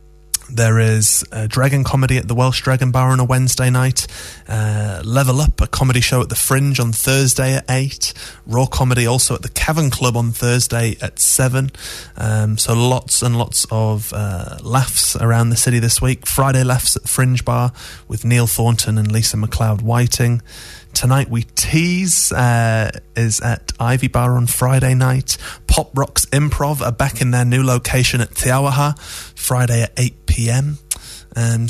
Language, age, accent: English, 20-39, British